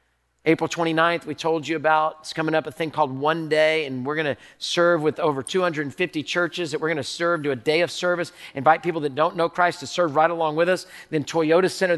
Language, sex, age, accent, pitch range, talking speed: English, male, 40-59, American, 150-180 Hz, 230 wpm